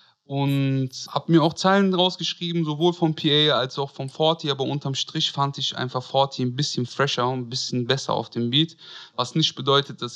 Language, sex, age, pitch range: German, male, 30-49, 130-170 Hz